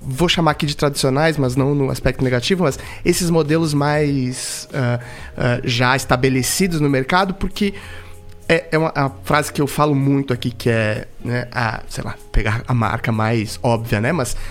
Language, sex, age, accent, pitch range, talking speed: Portuguese, male, 20-39, Brazilian, 130-175 Hz, 165 wpm